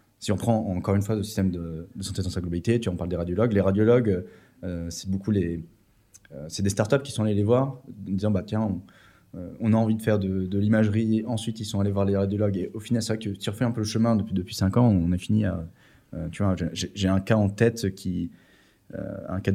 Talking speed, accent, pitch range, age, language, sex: 275 wpm, French, 90-110 Hz, 20-39, French, male